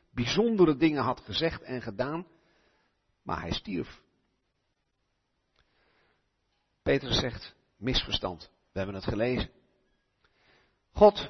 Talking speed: 90 wpm